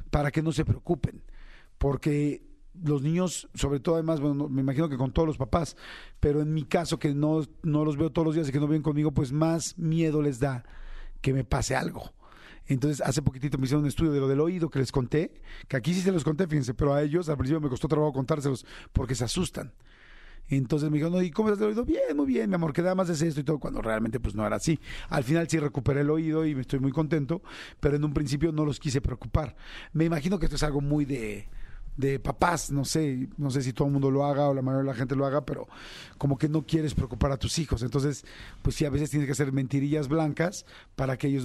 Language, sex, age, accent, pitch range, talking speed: Spanish, male, 40-59, Mexican, 140-165 Hz, 250 wpm